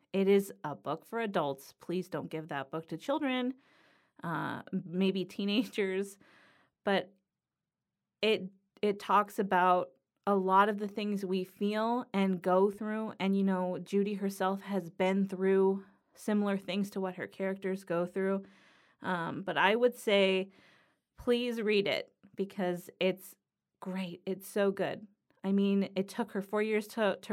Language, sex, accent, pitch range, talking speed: English, female, American, 185-215 Hz, 155 wpm